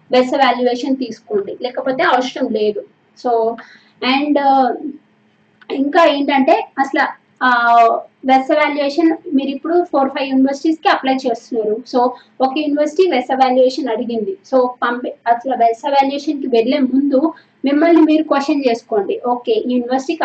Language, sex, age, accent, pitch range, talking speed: Telugu, female, 20-39, native, 235-290 Hz, 120 wpm